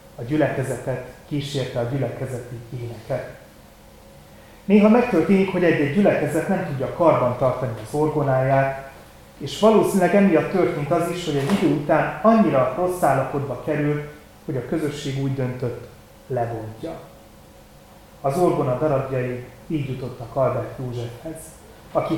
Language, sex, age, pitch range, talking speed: Hungarian, male, 30-49, 125-150 Hz, 125 wpm